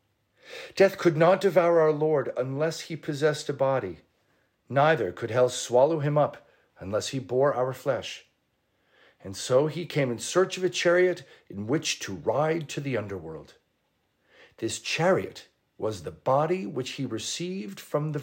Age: 50-69